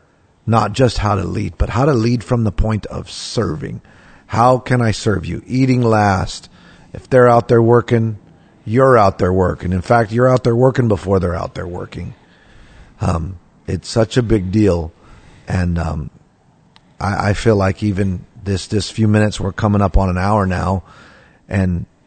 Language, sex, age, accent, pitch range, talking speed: English, male, 40-59, American, 95-110 Hz, 180 wpm